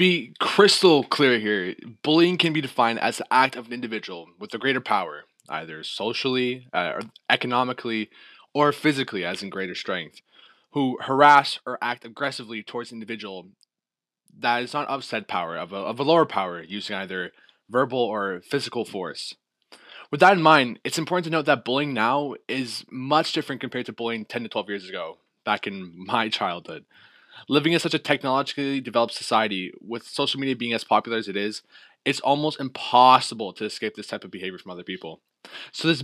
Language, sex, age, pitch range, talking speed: English, male, 20-39, 110-140 Hz, 185 wpm